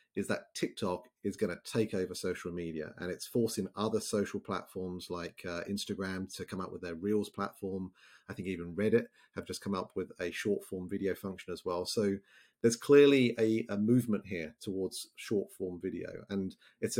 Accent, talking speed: British, 190 wpm